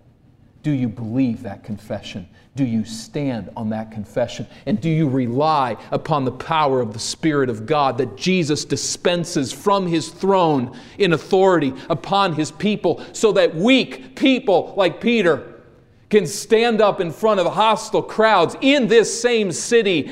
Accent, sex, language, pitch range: American, male, English, 120-185 Hz